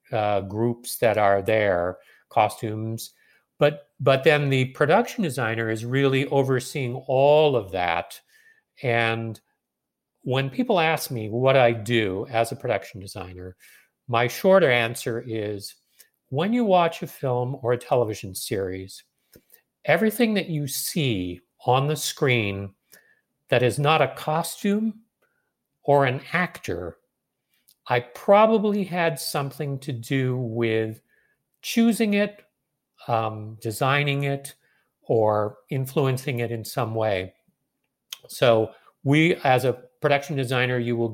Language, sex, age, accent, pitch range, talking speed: English, male, 50-69, American, 110-145 Hz, 125 wpm